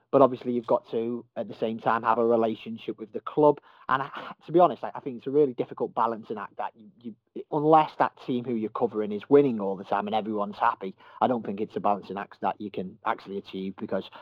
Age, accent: 40-59, British